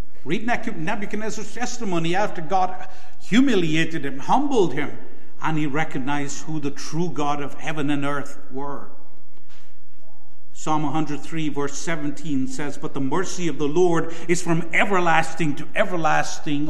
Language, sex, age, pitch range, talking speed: English, male, 50-69, 140-180 Hz, 135 wpm